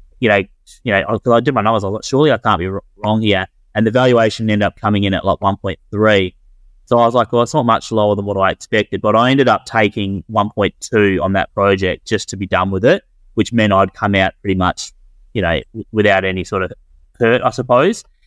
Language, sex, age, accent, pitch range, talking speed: English, male, 20-39, Australian, 100-110 Hz, 255 wpm